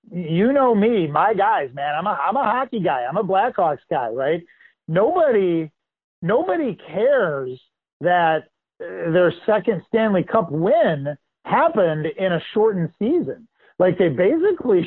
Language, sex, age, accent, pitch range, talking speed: English, male, 40-59, American, 165-225 Hz, 135 wpm